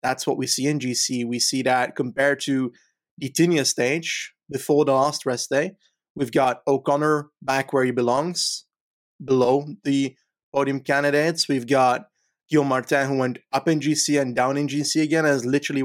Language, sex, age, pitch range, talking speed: English, male, 20-39, 130-145 Hz, 175 wpm